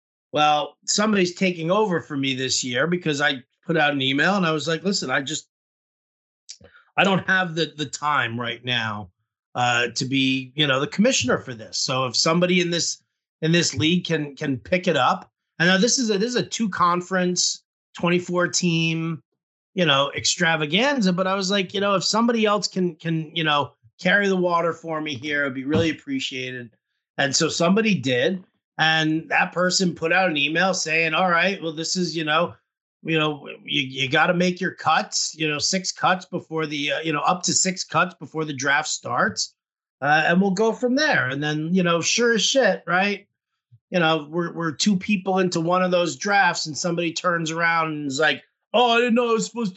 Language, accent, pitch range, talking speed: English, American, 150-190 Hz, 210 wpm